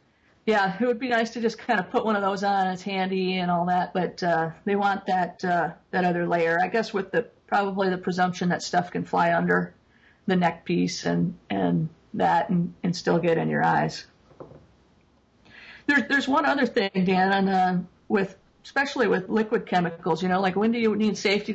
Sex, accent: female, American